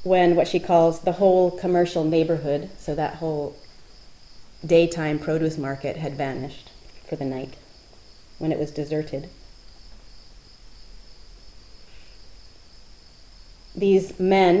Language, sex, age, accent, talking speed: English, female, 30-49, American, 105 wpm